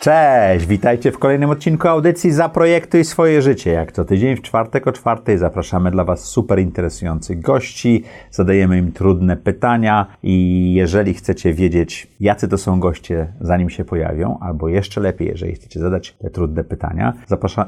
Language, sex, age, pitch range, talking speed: Polish, male, 30-49, 90-120 Hz, 160 wpm